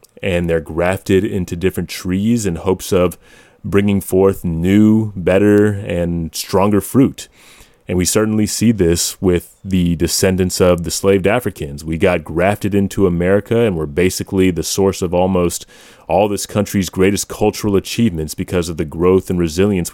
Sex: male